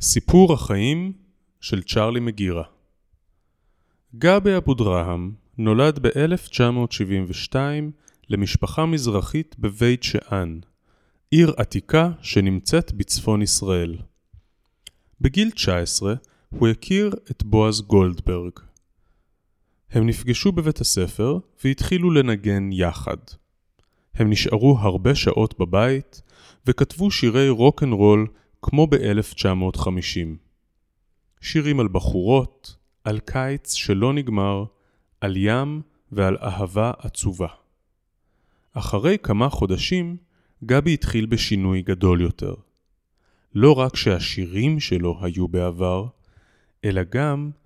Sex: male